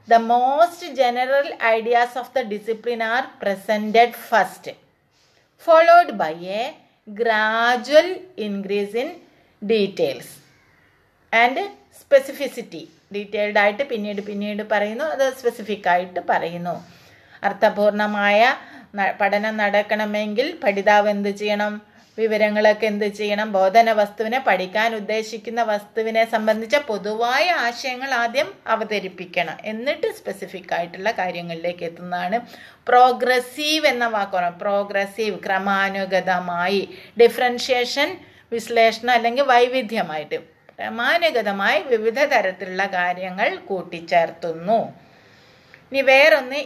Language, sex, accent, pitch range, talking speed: Malayalam, female, native, 200-245 Hz, 90 wpm